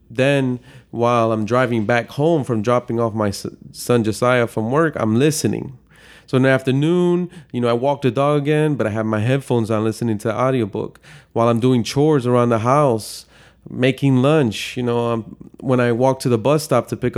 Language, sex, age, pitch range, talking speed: English, male, 30-49, 115-145 Hz, 205 wpm